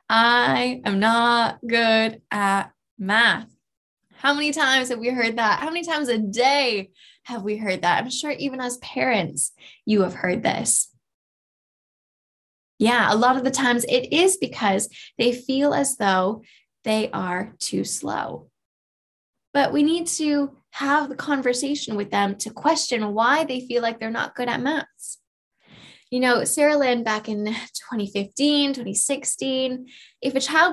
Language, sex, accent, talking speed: English, female, American, 155 wpm